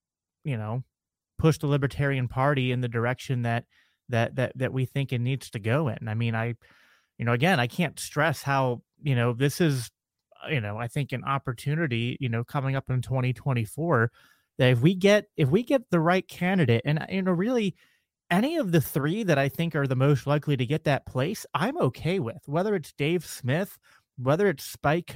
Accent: American